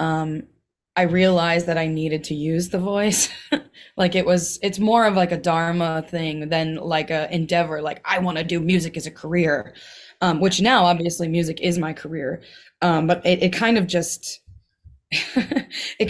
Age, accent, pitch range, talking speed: 20-39, American, 160-195 Hz, 185 wpm